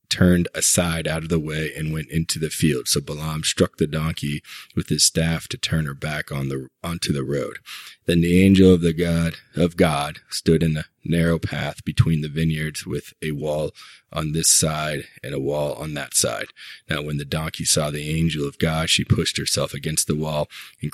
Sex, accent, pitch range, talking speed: male, American, 75-80 Hz, 205 wpm